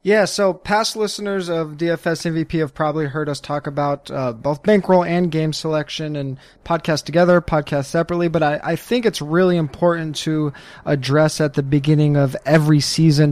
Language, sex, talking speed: English, male, 175 wpm